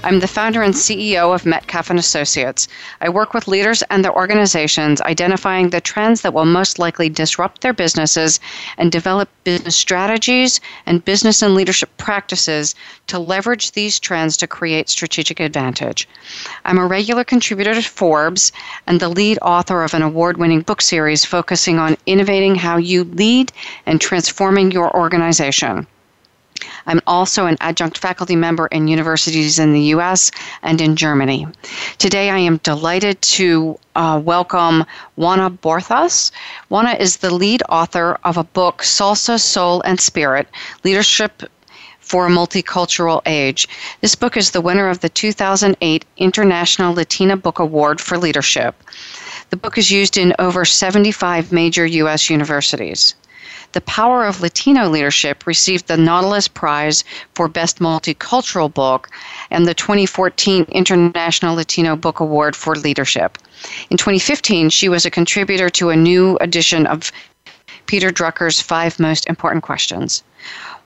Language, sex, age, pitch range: English, female, 40-59, 160-195 Hz